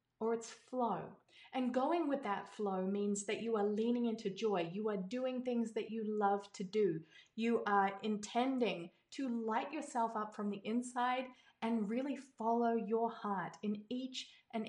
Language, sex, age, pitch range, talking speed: English, female, 30-49, 200-245 Hz, 170 wpm